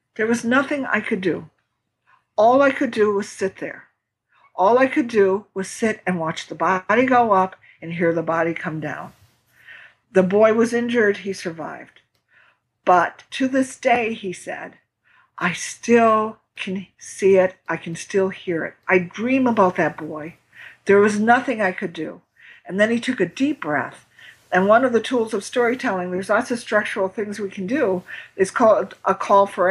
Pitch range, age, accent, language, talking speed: 185-235 Hz, 50-69, American, English, 185 wpm